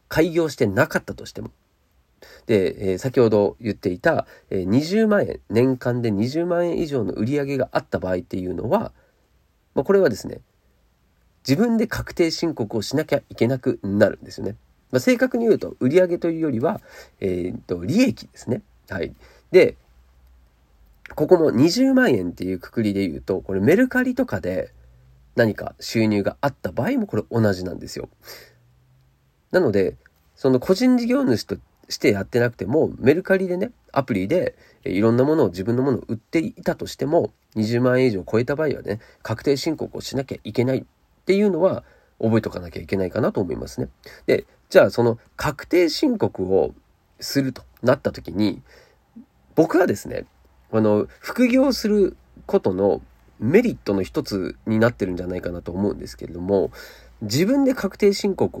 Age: 40-59